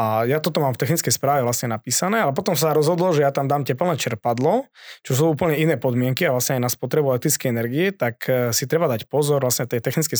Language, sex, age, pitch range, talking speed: Slovak, male, 20-39, 125-155 Hz, 230 wpm